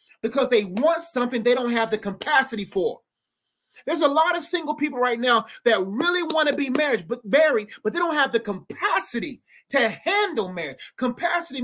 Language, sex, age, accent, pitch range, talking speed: English, male, 30-49, American, 250-325 Hz, 185 wpm